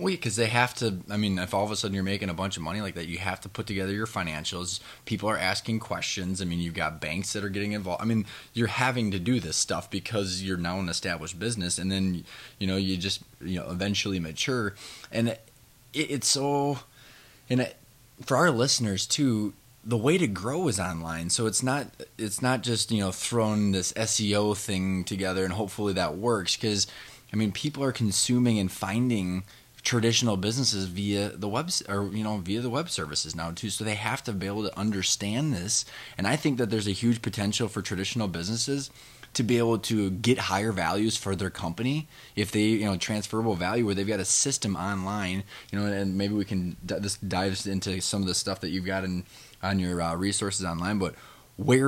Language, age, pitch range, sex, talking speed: English, 20-39, 95-115 Hz, male, 215 wpm